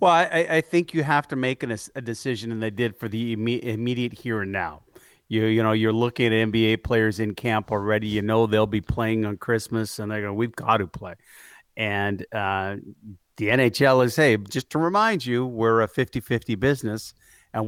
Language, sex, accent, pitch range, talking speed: English, male, American, 110-130 Hz, 205 wpm